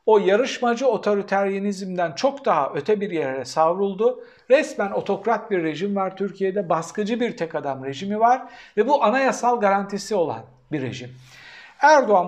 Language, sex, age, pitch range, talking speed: Turkish, male, 60-79, 165-240 Hz, 140 wpm